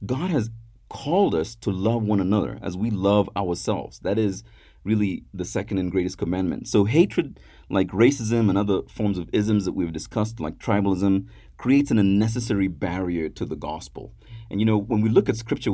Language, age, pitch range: English, 30-49, 95-115 Hz